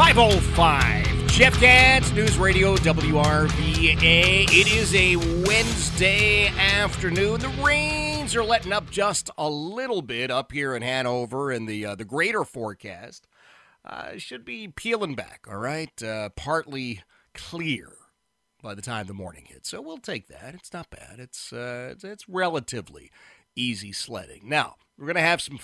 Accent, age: American, 30-49